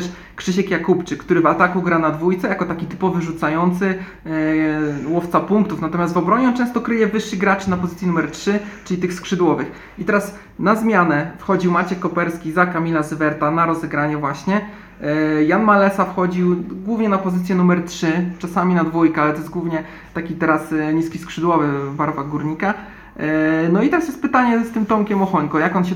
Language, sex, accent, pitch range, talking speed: Polish, male, native, 165-190 Hz, 175 wpm